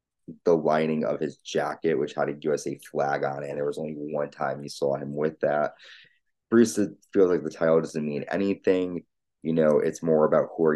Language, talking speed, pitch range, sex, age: English, 205 wpm, 75-85 Hz, male, 20-39